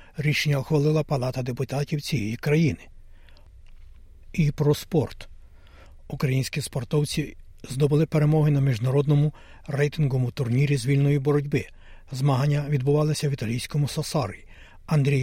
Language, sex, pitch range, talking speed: Ukrainian, male, 110-150 Hz, 100 wpm